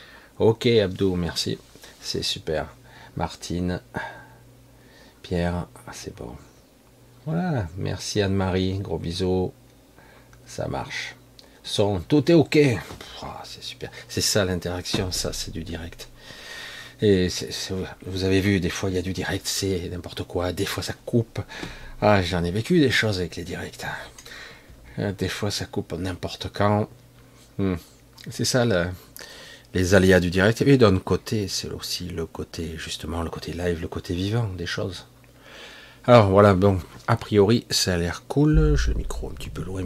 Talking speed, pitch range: 160 wpm, 90-125 Hz